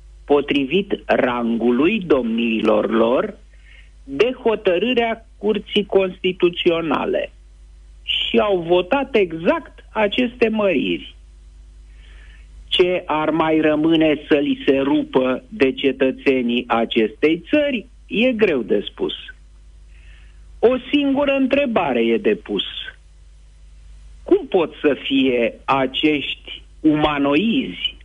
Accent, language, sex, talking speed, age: native, Romanian, male, 90 wpm, 50-69